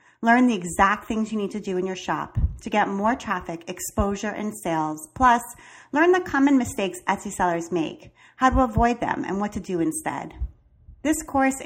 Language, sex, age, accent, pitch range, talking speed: English, female, 30-49, American, 185-235 Hz, 190 wpm